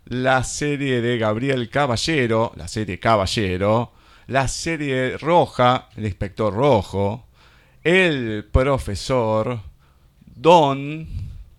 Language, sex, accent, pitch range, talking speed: Spanish, male, Argentinian, 95-125 Hz, 90 wpm